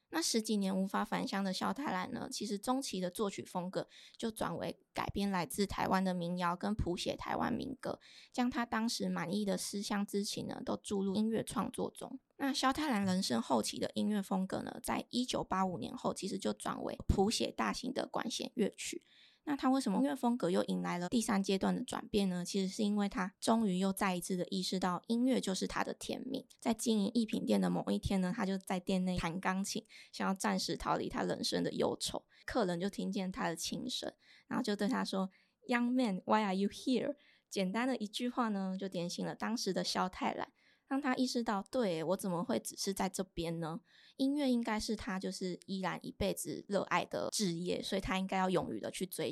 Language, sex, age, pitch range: Chinese, female, 20-39, 190-240 Hz